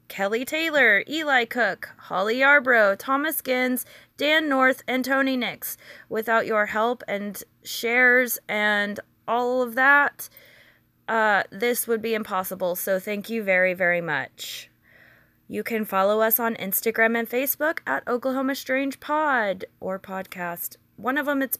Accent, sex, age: American, female, 20-39